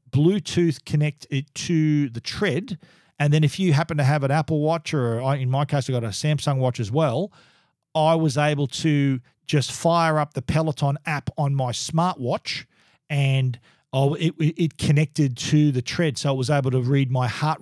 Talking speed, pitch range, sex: 195 wpm, 130-160 Hz, male